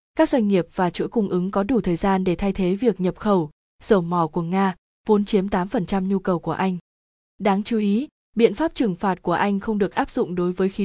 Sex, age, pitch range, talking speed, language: female, 20-39, 190-230 Hz, 245 wpm, Vietnamese